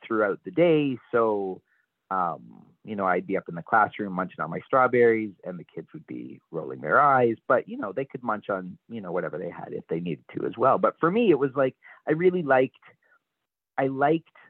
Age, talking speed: 30-49, 225 wpm